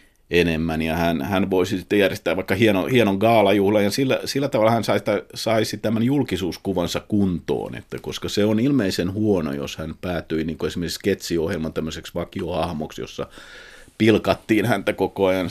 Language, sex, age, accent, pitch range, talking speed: Finnish, male, 50-69, native, 85-110 Hz, 150 wpm